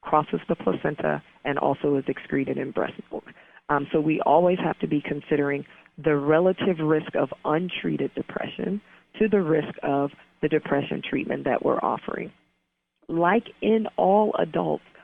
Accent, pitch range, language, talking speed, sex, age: American, 145-185 Hz, English, 150 wpm, female, 40-59